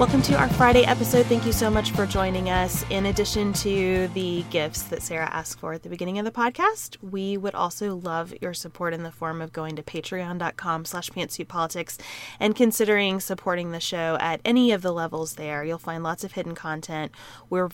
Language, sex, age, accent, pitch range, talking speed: English, female, 20-39, American, 165-195 Hz, 205 wpm